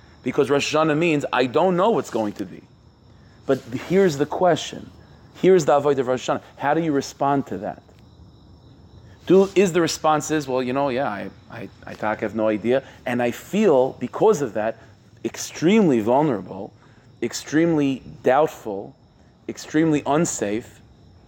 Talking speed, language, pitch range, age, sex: 160 wpm, English, 115-155 Hz, 30-49, male